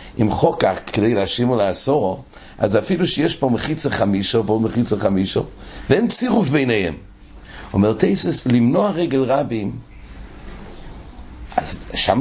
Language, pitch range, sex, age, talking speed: English, 115-160 Hz, male, 60-79, 120 wpm